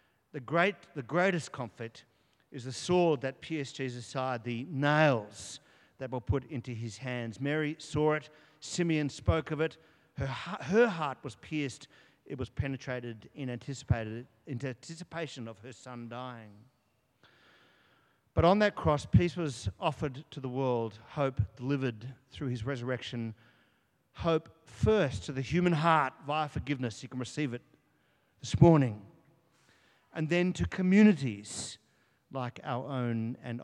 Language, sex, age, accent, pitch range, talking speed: English, male, 50-69, Australian, 125-160 Hz, 145 wpm